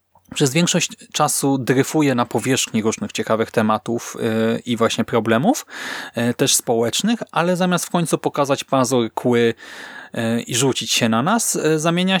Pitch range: 120-165 Hz